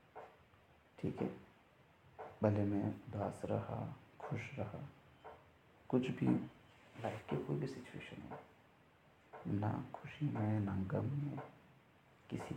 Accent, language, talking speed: native, Hindi, 100 wpm